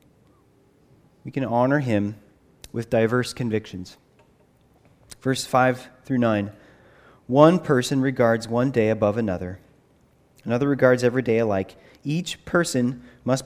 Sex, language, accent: male, English, American